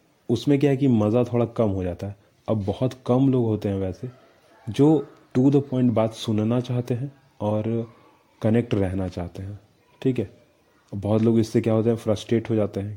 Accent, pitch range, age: native, 100-115 Hz, 30-49